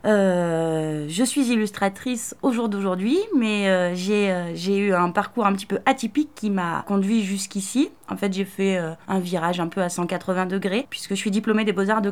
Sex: female